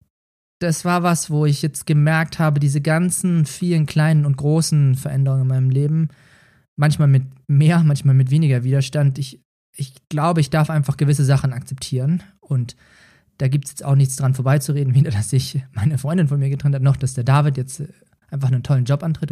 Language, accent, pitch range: German, German, 135-155 Hz